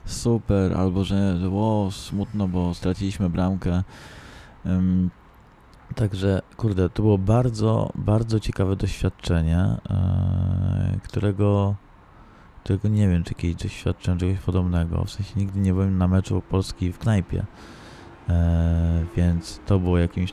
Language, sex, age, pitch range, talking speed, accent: Polish, male, 20-39, 90-105 Hz, 125 wpm, native